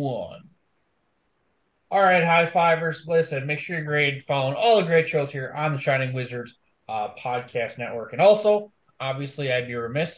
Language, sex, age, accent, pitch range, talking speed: English, male, 20-39, American, 125-165 Hz, 170 wpm